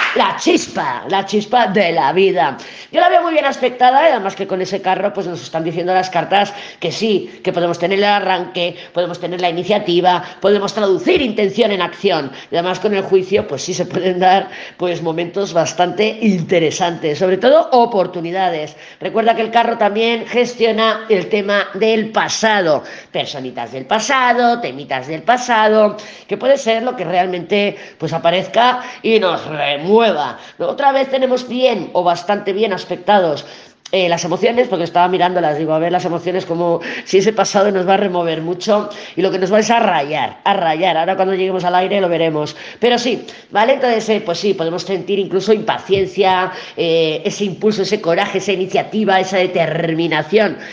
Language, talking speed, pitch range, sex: Spanish, 175 wpm, 175-225 Hz, female